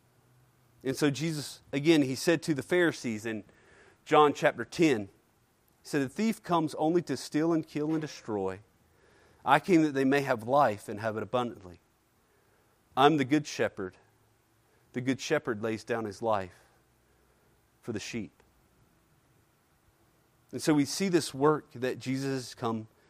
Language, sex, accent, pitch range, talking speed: English, male, American, 115-160 Hz, 155 wpm